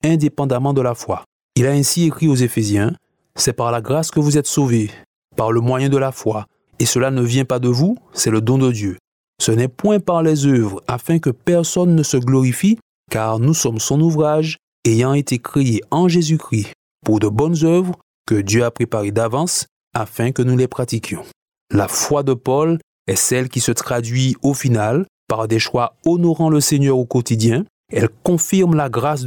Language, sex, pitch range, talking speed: French, male, 120-155 Hz, 200 wpm